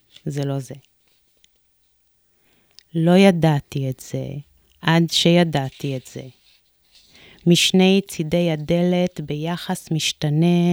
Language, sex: Hebrew, female